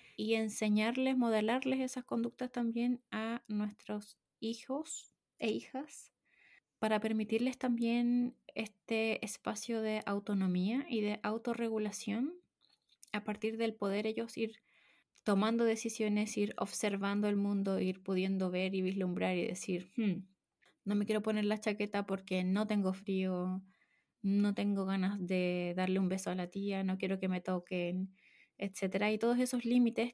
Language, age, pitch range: Spanish, 20-39, 195-225 Hz